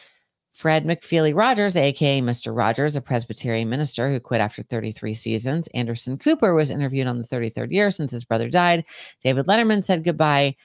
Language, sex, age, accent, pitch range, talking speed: English, female, 40-59, American, 125-180 Hz, 170 wpm